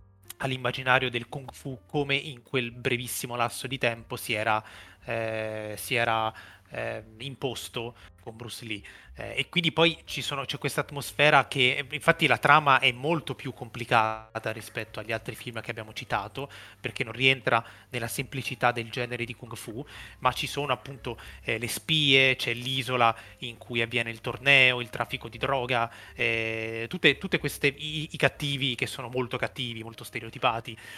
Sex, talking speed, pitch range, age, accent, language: male, 160 wpm, 115-140 Hz, 20-39, native, Italian